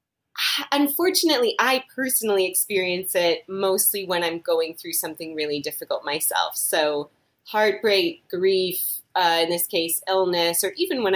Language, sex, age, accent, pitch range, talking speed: English, female, 30-49, American, 165-225 Hz, 135 wpm